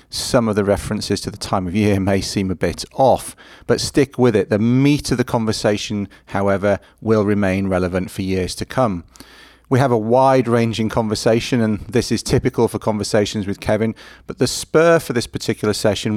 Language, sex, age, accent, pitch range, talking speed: English, male, 40-59, British, 100-115 Hz, 195 wpm